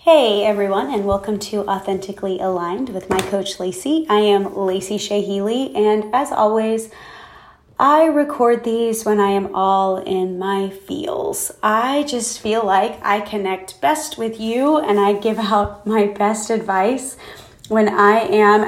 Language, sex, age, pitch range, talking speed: English, female, 20-39, 195-230 Hz, 150 wpm